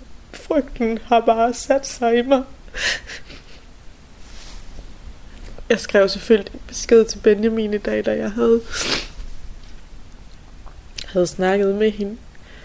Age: 20-39